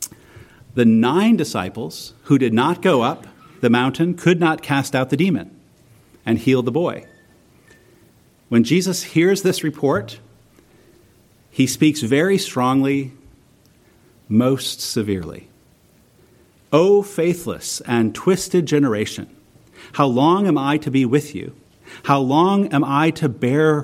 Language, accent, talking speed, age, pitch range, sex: English, American, 125 wpm, 40-59, 125-175 Hz, male